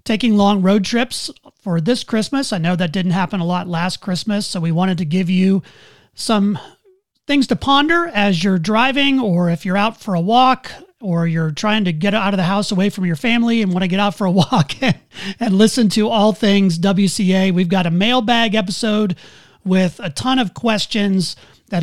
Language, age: English, 30-49